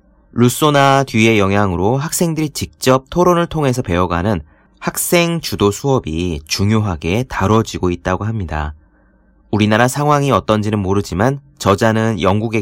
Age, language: 30-49, Korean